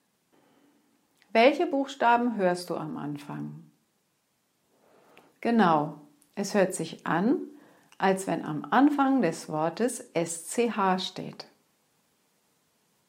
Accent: German